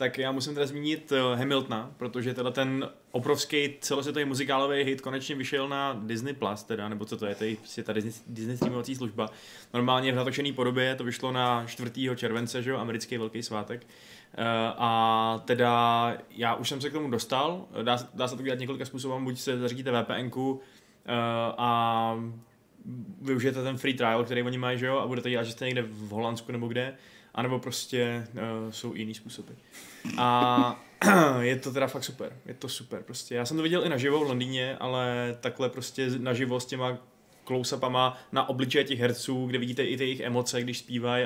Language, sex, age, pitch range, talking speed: Czech, male, 20-39, 115-135 Hz, 185 wpm